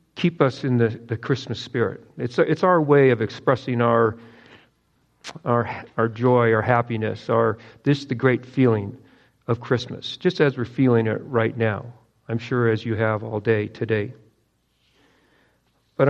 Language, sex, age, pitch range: English, male, 50-69, 115-135 Hz